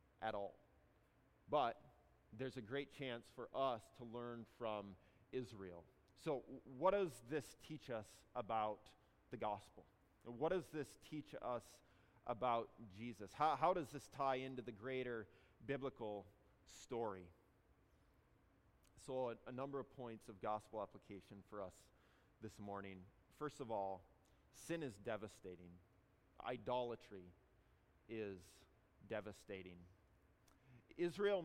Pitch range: 110-150 Hz